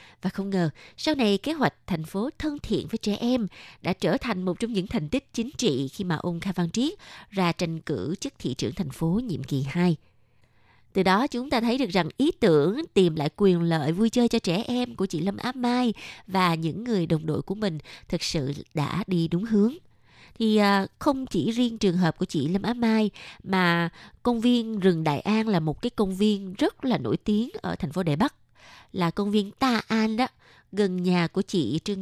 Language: Vietnamese